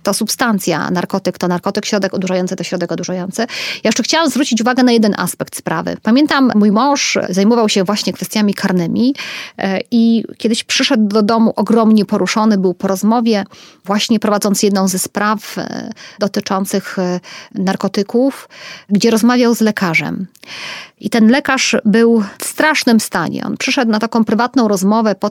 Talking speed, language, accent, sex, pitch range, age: 145 wpm, Polish, native, female, 195-235 Hz, 30-49